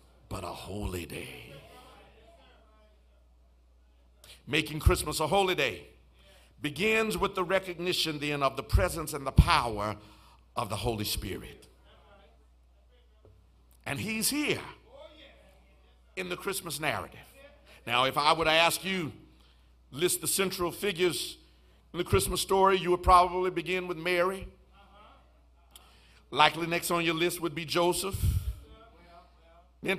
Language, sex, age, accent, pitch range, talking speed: English, male, 50-69, American, 130-185 Hz, 120 wpm